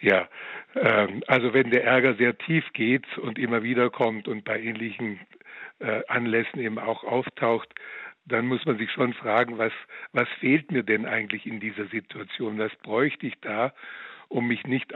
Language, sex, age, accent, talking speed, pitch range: German, male, 60-79, German, 165 wpm, 115-130 Hz